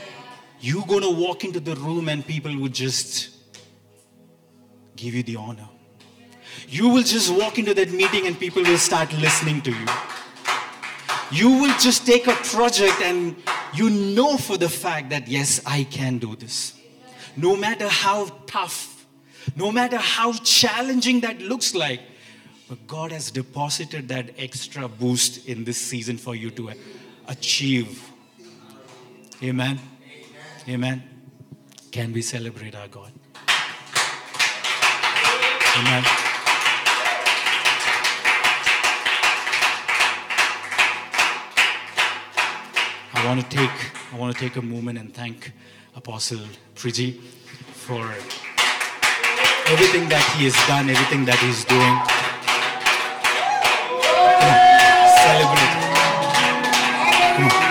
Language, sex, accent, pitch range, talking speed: English, male, Indian, 125-145 Hz, 105 wpm